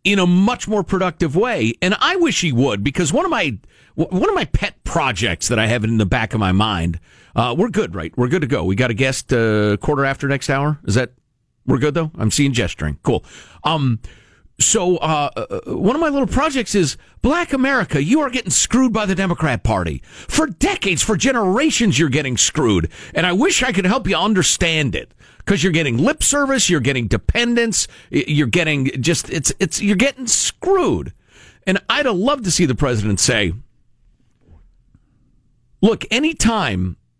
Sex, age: male, 50-69